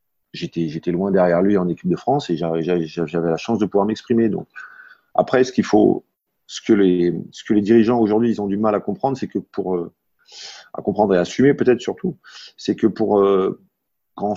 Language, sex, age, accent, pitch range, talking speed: French, male, 30-49, French, 90-110 Hz, 205 wpm